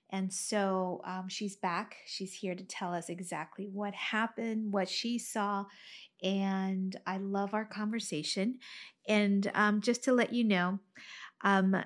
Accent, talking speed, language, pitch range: American, 145 wpm, English, 190-215 Hz